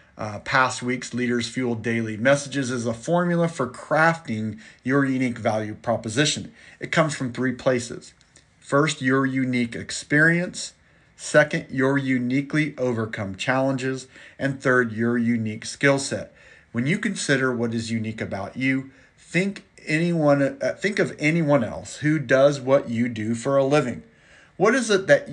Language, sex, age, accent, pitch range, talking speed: English, male, 40-59, American, 120-145 Hz, 150 wpm